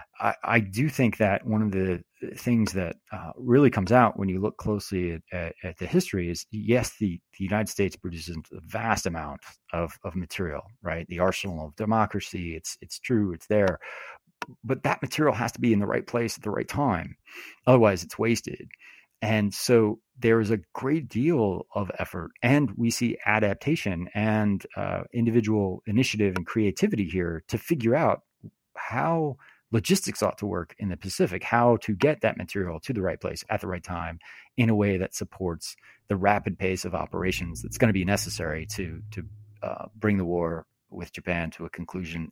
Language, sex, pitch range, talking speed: English, male, 90-115 Hz, 190 wpm